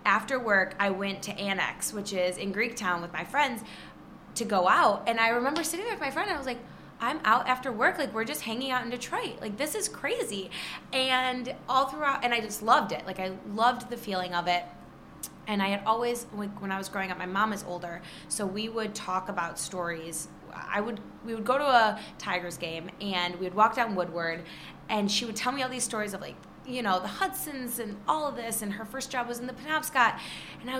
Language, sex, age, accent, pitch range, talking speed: English, female, 20-39, American, 185-240 Hz, 235 wpm